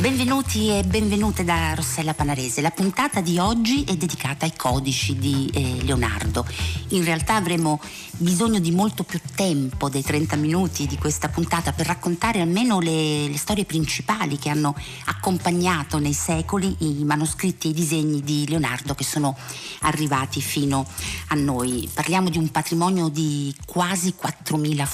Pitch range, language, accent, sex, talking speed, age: 135-175 Hz, Italian, native, female, 150 wpm, 50-69